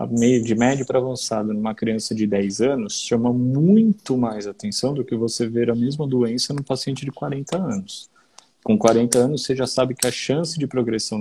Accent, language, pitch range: Brazilian, Portuguese, 115-150 Hz